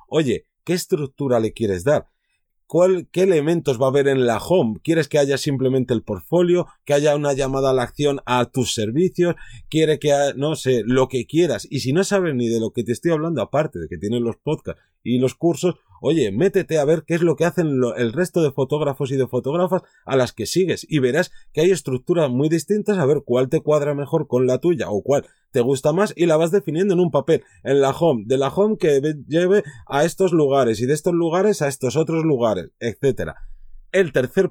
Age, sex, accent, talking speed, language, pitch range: 30-49, male, Spanish, 225 wpm, Spanish, 120-160 Hz